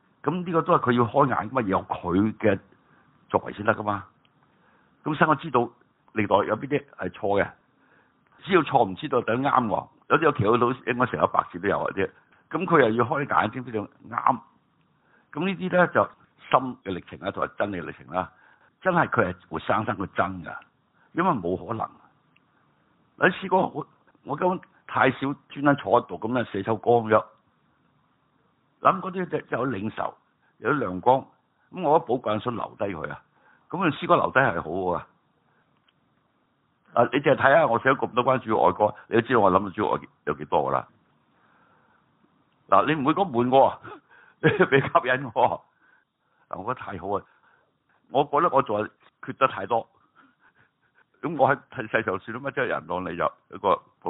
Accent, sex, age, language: native, male, 60-79, Chinese